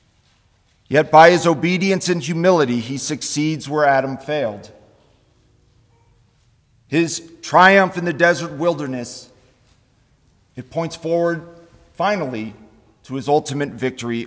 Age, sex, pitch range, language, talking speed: 40-59, male, 125-165 Hz, English, 105 wpm